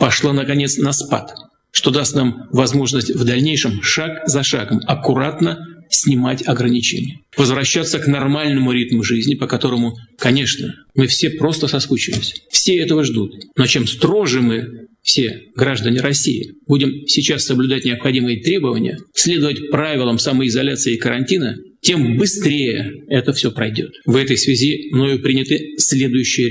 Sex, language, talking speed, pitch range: male, Russian, 135 wpm, 125-145 Hz